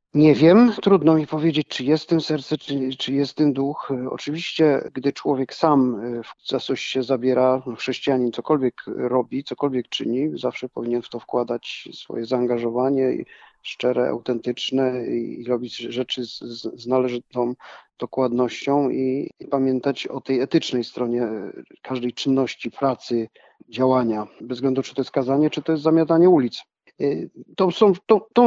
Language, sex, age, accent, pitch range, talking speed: Polish, male, 40-59, native, 125-155 Hz, 135 wpm